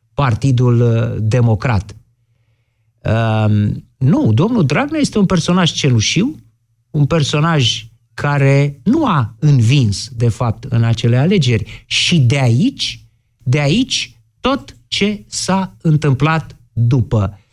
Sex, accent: male, native